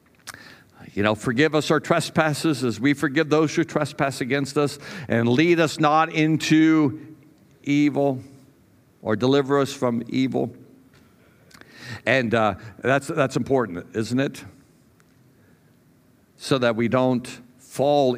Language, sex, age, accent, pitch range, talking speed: English, male, 60-79, American, 110-150 Hz, 120 wpm